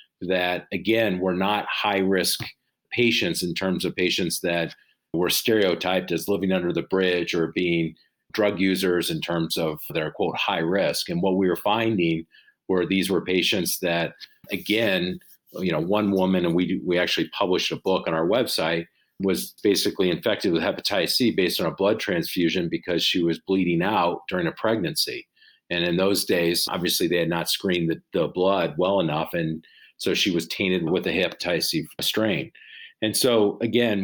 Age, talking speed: 40-59, 180 wpm